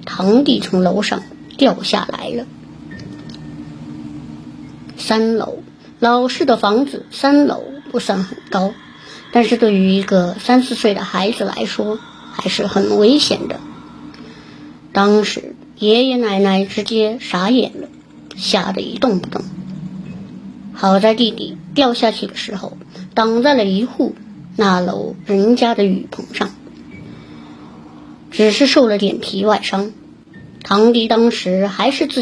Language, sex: Chinese, male